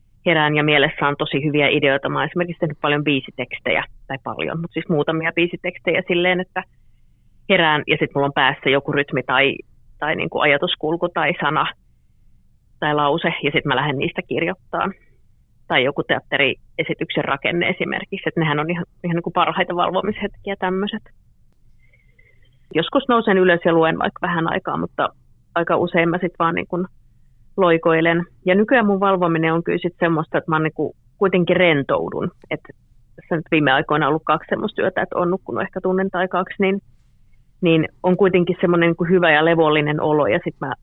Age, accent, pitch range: 30-49, native, 145-180 Hz